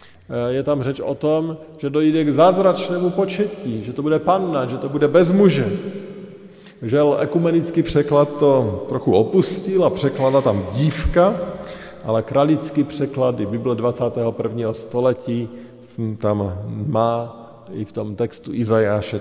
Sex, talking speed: male, 130 wpm